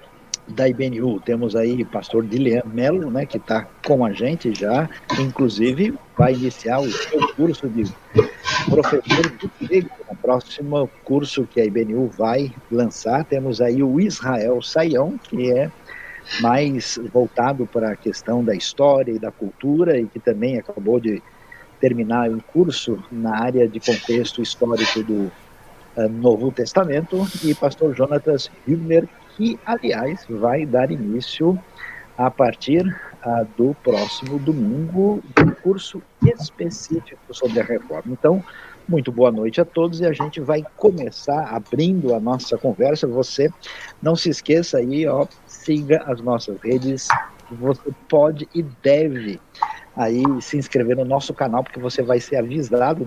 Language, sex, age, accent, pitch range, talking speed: Portuguese, male, 60-79, Brazilian, 120-155 Hz, 140 wpm